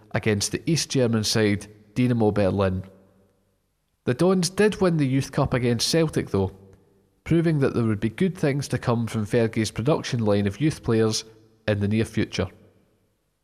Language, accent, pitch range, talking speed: English, British, 105-140 Hz, 165 wpm